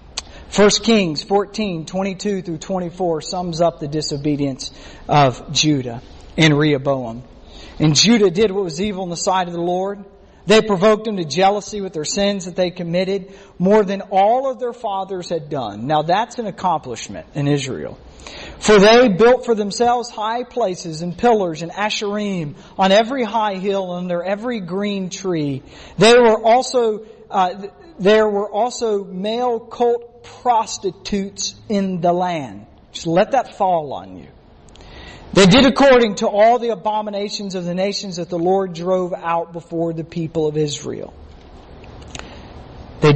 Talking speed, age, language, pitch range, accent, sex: 155 wpm, 40-59, English, 150-210 Hz, American, male